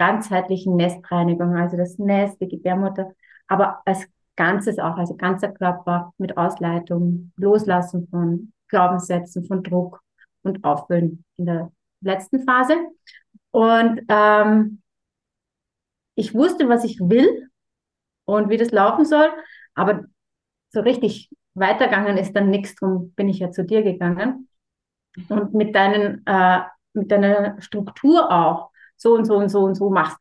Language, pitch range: German, 185-225 Hz